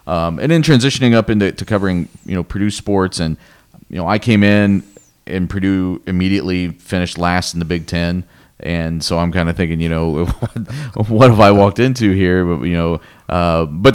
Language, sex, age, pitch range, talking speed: English, male, 40-59, 85-100 Hz, 195 wpm